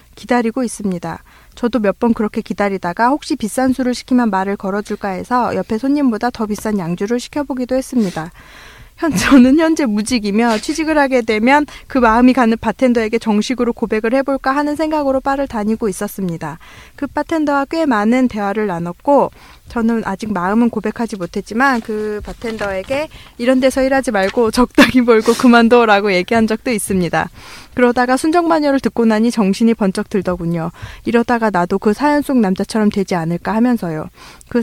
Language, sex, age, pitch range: Korean, female, 20-39, 205-255 Hz